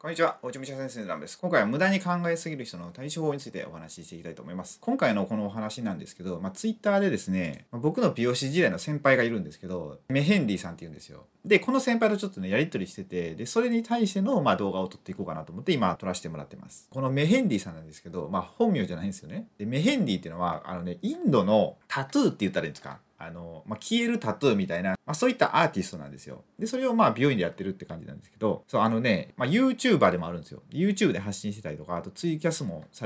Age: 30-49